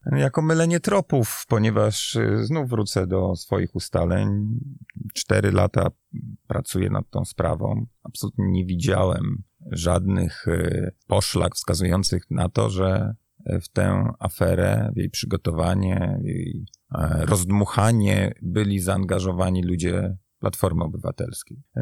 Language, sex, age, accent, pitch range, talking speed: Polish, male, 30-49, native, 95-115 Hz, 105 wpm